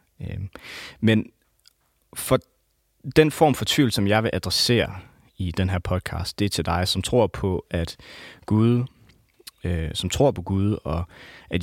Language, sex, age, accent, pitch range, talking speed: English, male, 30-49, Danish, 90-120 Hz, 150 wpm